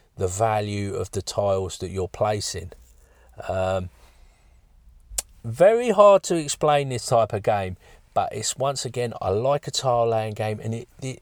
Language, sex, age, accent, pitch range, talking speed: English, male, 40-59, British, 100-115 Hz, 160 wpm